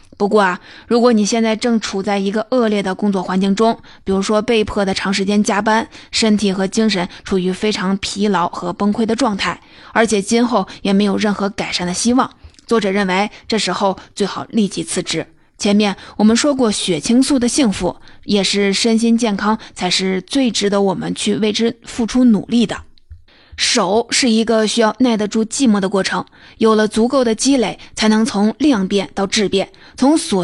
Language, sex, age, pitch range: Chinese, female, 20-39, 195-230 Hz